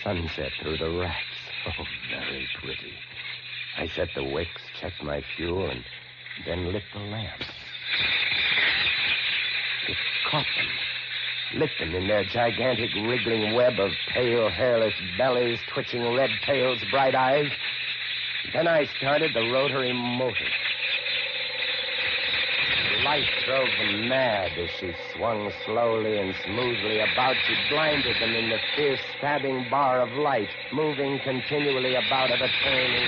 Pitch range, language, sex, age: 110-140 Hz, English, male, 60-79